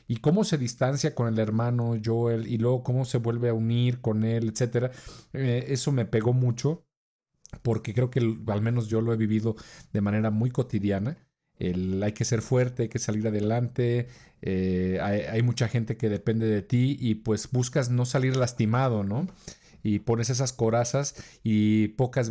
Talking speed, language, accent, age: 180 wpm, Spanish, Mexican, 40-59